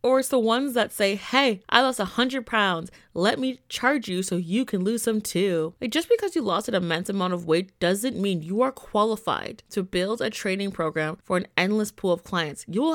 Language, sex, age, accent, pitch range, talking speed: English, female, 20-39, American, 175-245 Hz, 230 wpm